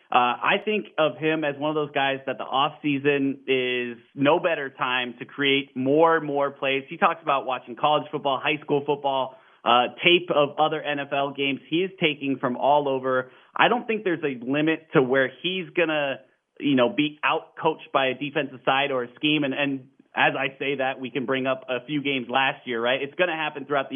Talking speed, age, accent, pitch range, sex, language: 225 wpm, 30-49, American, 135-155 Hz, male, English